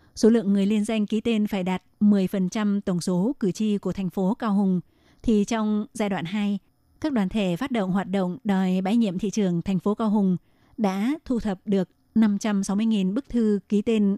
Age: 20-39